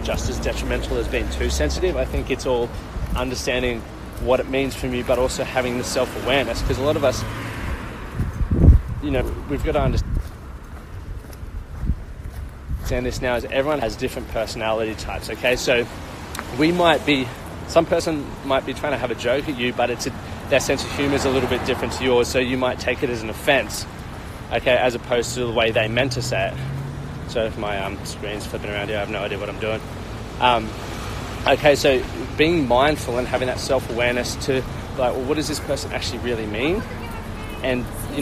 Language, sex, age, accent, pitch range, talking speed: English, male, 20-39, Australian, 100-125 Hz, 200 wpm